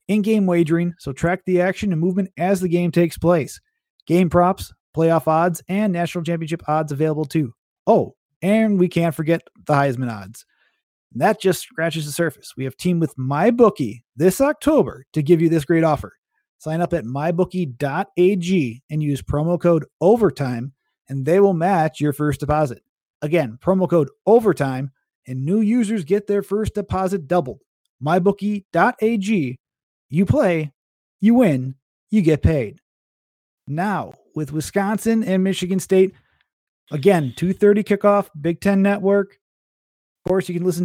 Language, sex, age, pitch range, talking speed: English, male, 30-49, 150-190 Hz, 155 wpm